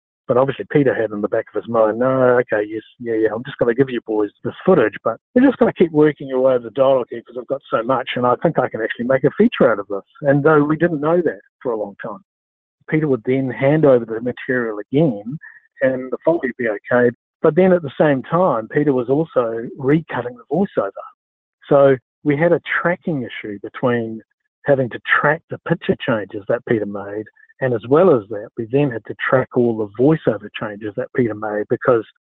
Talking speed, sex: 230 wpm, male